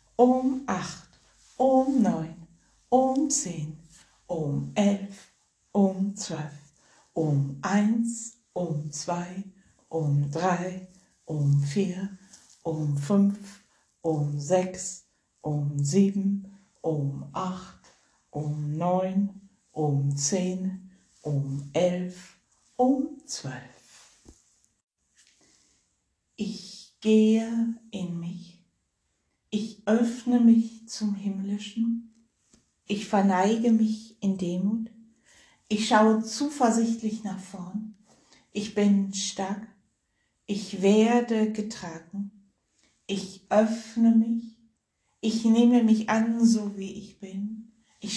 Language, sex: German, female